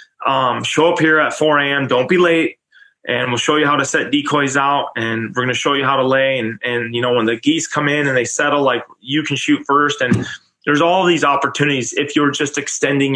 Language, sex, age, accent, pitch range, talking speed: English, male, 20-39, American, 115-145 Hz, 240 wpm